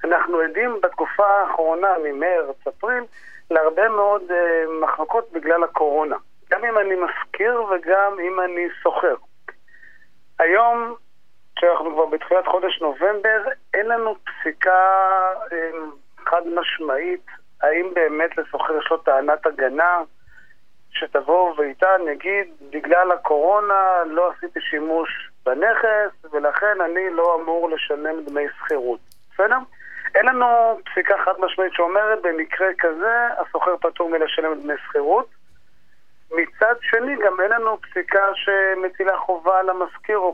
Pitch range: 160-195 Hz